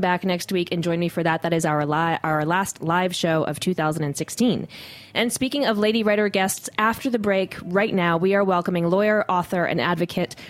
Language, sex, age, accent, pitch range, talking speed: English, female, 20-39, American, 165-205 Hz, 205 wpm